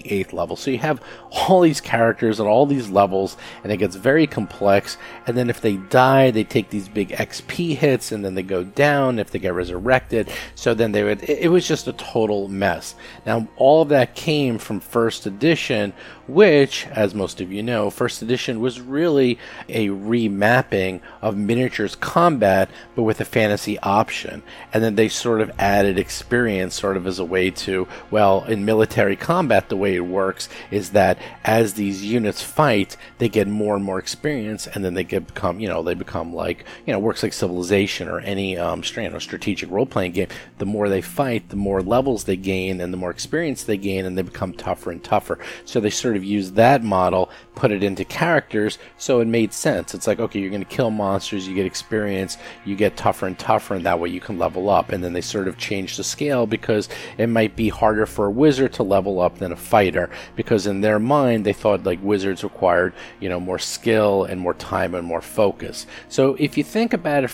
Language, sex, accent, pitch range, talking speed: English, male, American, 95-120 Hz, 210 wpm